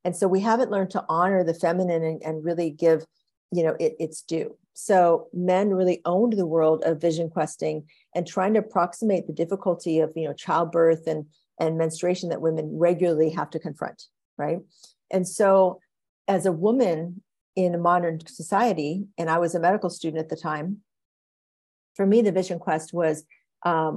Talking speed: 180 wpm